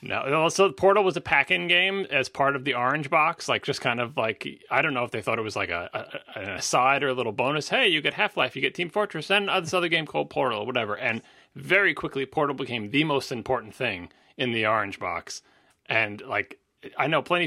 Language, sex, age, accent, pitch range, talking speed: English, male, 30-49, American, 120-155 Hz, 235 wpm